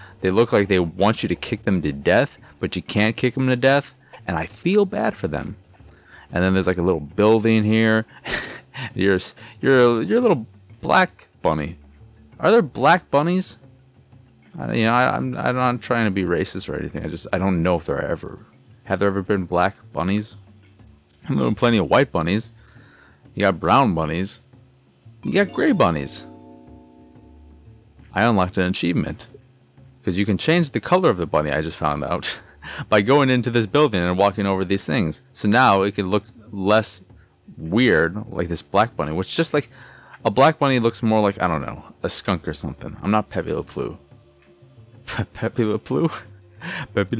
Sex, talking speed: male, 180 wpm